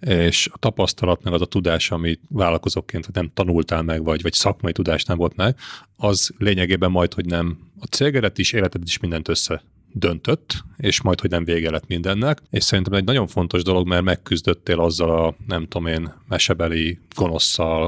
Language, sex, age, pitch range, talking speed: Hungarian, male, 30-49, 85-100 Hz, 180 wpm